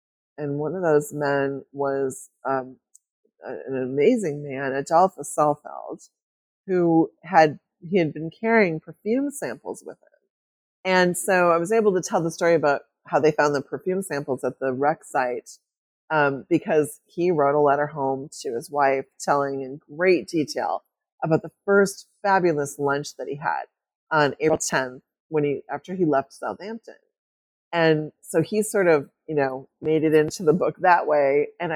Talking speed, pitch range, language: 170 wpm, 145-175 Hz, English